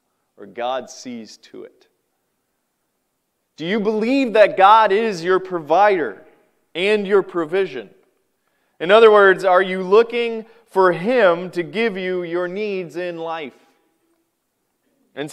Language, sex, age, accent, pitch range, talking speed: English, male, 30-49, American, 170-225 Hz, 125 wpm